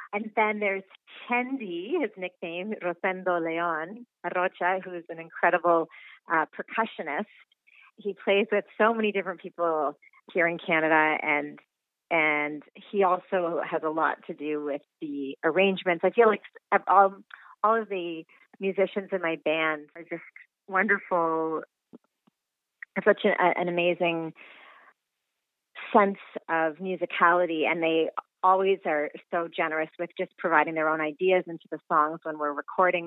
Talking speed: 140 wpm